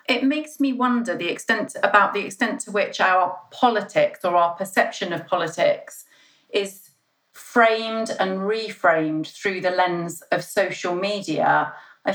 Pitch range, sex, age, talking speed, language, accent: 160-200 Hz, female, 40-59, 145 wpm, English, British